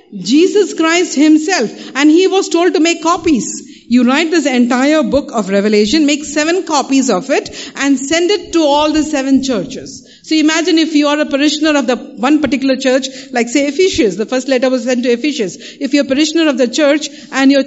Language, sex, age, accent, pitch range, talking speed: English, female, 50-69, Indian, 245-310 Hz, 210 wpm